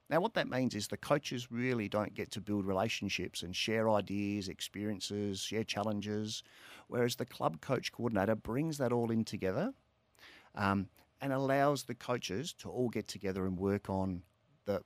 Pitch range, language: 100-125 Hz, English